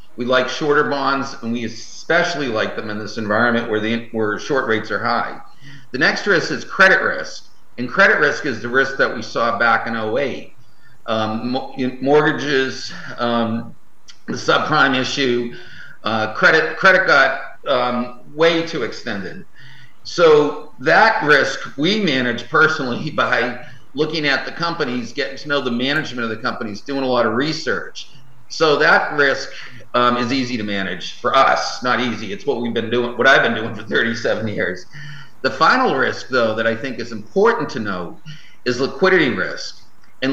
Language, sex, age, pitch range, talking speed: English, male, 50-69, 115-140 Hz, 170 wpm